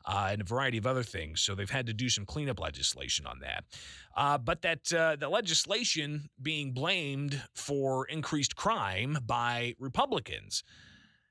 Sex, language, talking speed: male, English, 160 wpm